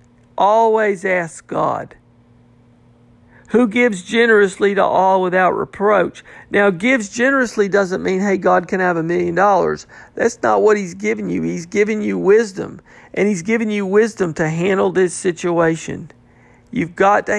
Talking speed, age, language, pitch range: 150 wpm, 50-69, English, 160-205 Hz